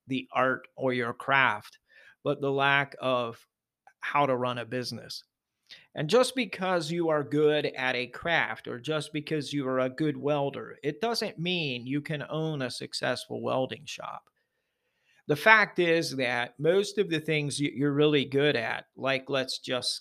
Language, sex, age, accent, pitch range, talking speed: English, male, 40-59, American, 125-155 Hz, 170 wpm